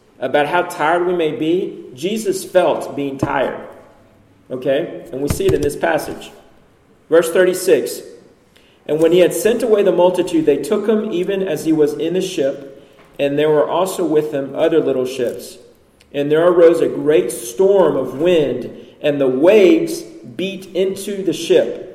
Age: 40-59